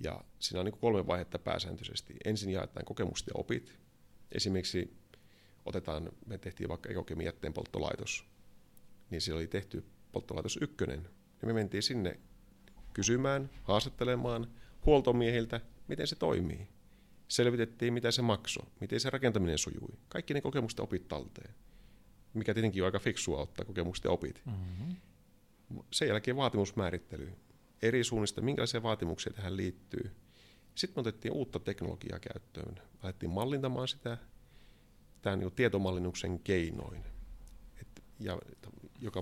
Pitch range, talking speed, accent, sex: 95-120 Hz, 125 wpm, native, male